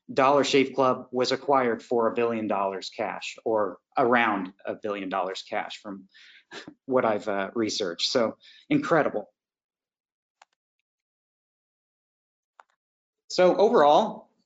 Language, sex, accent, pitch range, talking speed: English, male, American, 130-180 Hz, 105 wpm